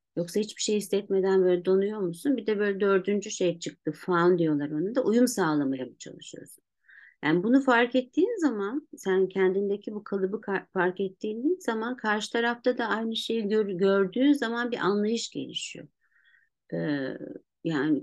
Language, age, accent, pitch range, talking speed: Turkish, 50-69, native, 175-220 Hz, 145 wpm